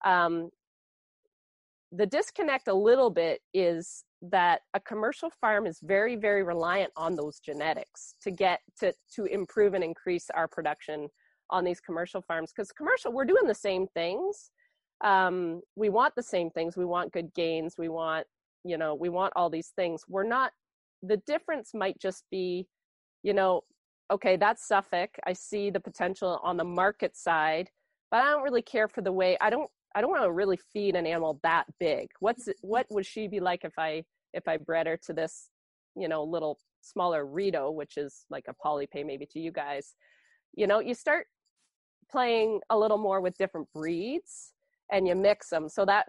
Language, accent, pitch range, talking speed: English, American, 165-215 Hz, 185 wpm